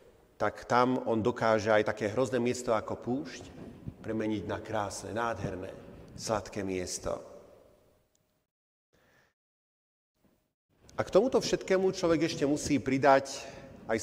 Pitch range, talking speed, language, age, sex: 115-165 Hz, 105 wpm, Slovak, 40-59, male